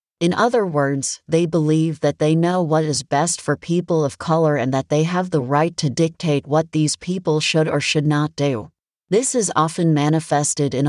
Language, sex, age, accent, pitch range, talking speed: English, female, 40-59, American, 145-165 Hz, 200 wpm